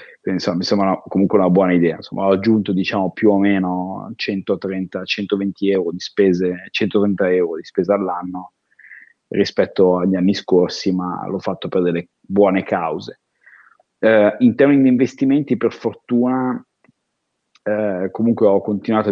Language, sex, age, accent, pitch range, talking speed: Italian, male, 30-49, native, 90-105 Hz, 130 wpm